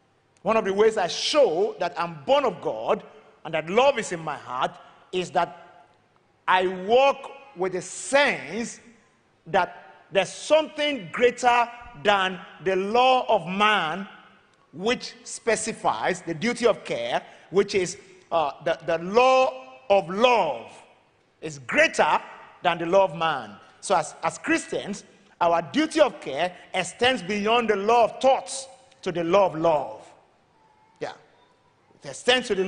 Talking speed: 145 wpm